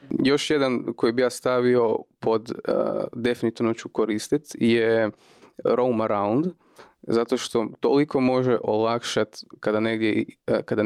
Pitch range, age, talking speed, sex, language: 110-120 Hz, 20-39, 120 wpm, male, Croatian